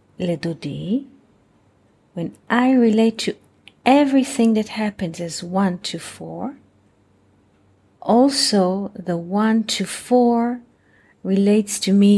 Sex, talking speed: female, 95 wpm